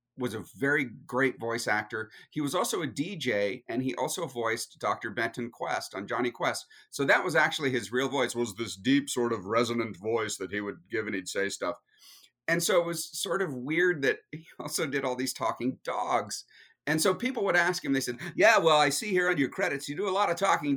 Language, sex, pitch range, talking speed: English, male, 120-190 Hz, 230 wpm